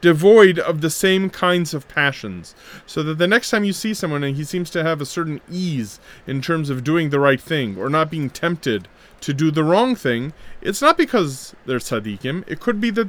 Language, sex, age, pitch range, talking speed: English, male, 30-49, 125-180 Hz, 220 wpm